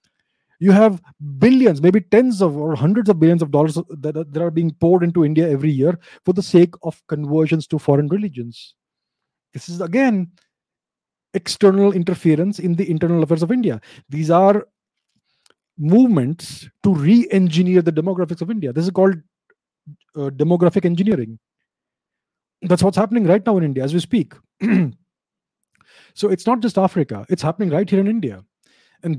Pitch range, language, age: 145-195 Hz, English, 30-49